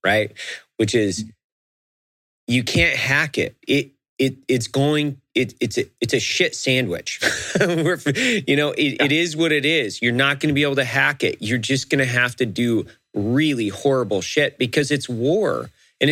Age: 30-49